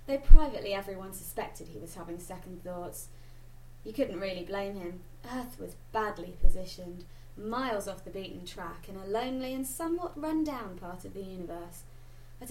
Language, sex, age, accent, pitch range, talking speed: English, female, 20-39, British, 180-265 Hz, 165 wpm